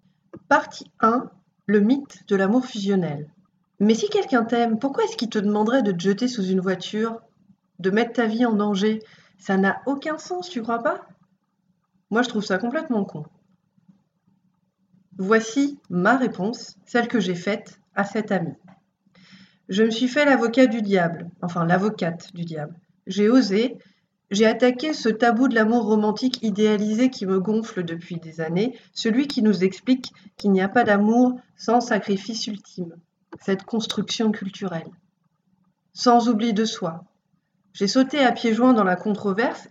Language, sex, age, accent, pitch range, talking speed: French, female, 40-59, French, 185-235 Hz, 160 wpm